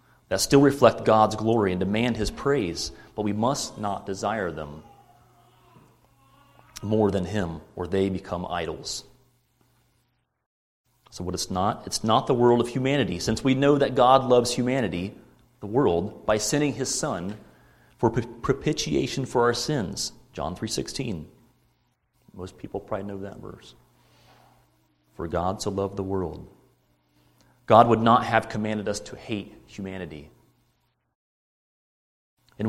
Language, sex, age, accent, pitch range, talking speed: English, male, 30-49, American, 105-135 Hz, 135 wpm